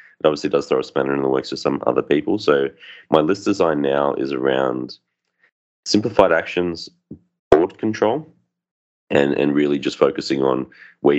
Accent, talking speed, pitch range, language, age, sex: Australian, 165 wpm, 65-70 Hz, English, 30-49, male